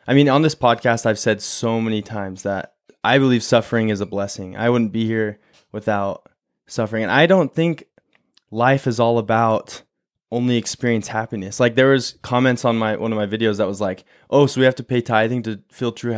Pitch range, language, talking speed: 110-135 Hz, English, 210 wpm